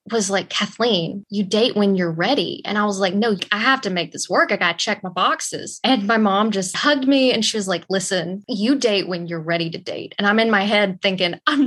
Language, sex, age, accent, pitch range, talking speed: English, female, 20-39, American, 180-220 Hz, 255 wpm